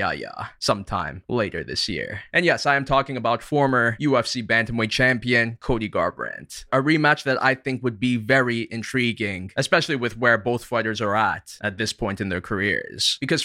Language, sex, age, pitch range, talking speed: English, male, 20-39, 110-135 Hz, 175 wpm